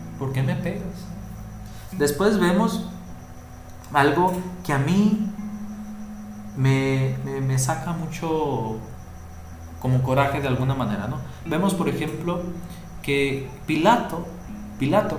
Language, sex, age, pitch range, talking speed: Spanish, male, 40-59, 110-160 Hz, 105 wpm